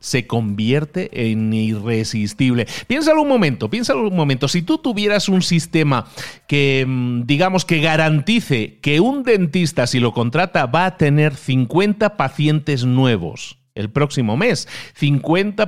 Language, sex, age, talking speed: Spanish, male, 40-59, 135 wpm